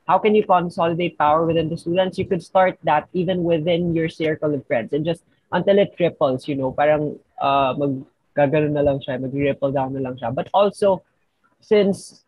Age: 20-39